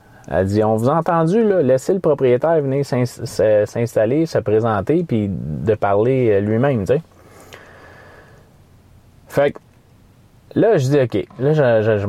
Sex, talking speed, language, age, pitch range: male, 160 wpm, French, 30-49, 95-120 Hz